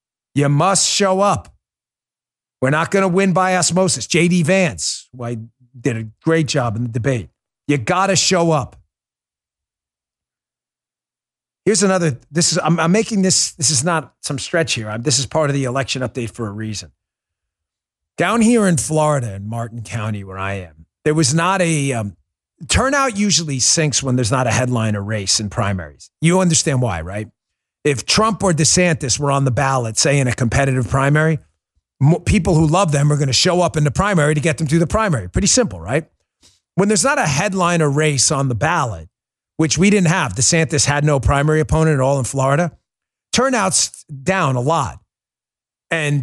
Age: 40-59